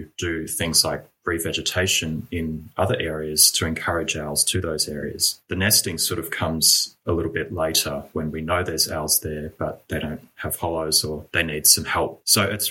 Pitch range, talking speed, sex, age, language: 80-95 Hz, 195 wpm, male, 20-39, English